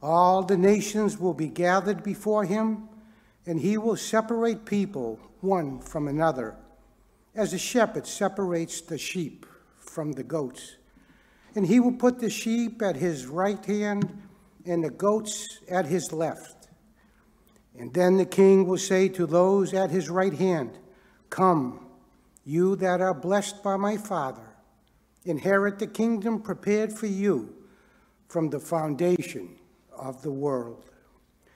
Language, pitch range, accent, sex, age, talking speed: English, 170-210 Hz, American, male, 60-79, 140 wpm